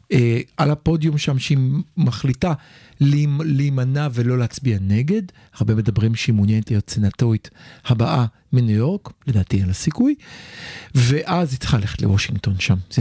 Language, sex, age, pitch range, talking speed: Hebrew, male, 50-69, 125-215 Hz, 125 wpm